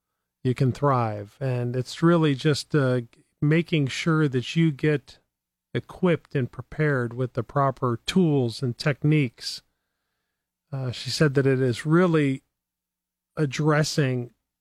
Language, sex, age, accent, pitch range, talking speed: English, male, 40-59, American, 120-150 Hz, 125 wpm